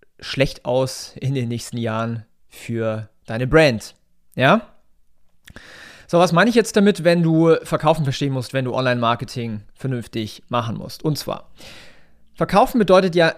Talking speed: 145 wpm